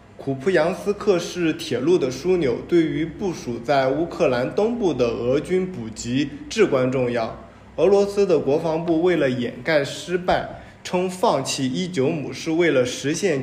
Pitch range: 130-175 Hz